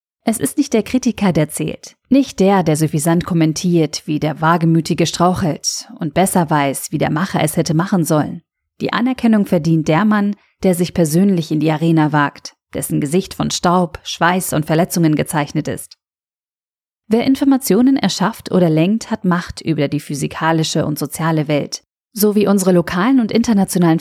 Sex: female